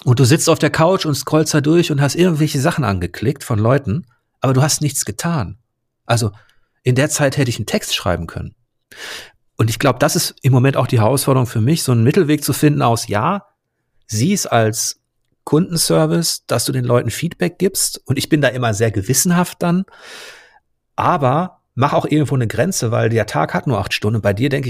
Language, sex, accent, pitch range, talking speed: German, male, German, 115-150 Hz, 205 wpm